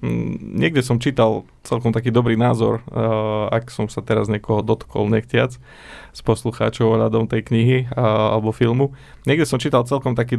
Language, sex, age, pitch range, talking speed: Slovak, male, 20-39, 110-125 Hz, 145 wpm